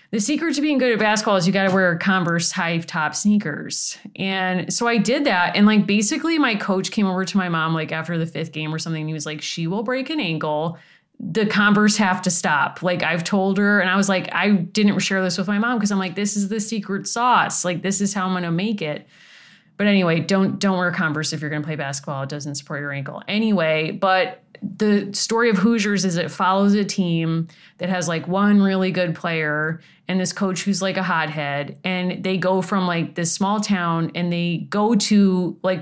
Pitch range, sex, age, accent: 165-205 Hz, female, 30-49, American